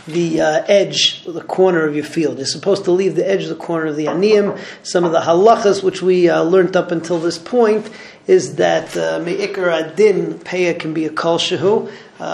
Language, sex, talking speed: English, male, 210 wpm